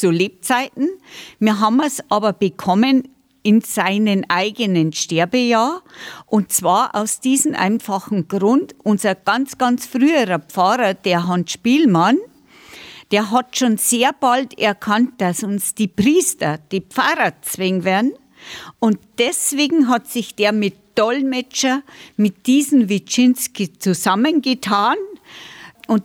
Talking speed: 120 wpm